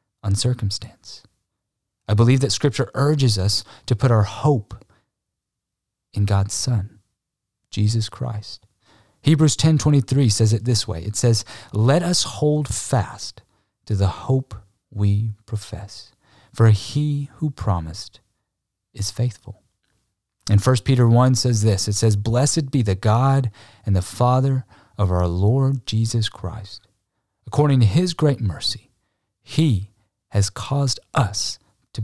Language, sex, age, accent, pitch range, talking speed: English, male, 30-49, American, 100-120 Hz, 130 wpm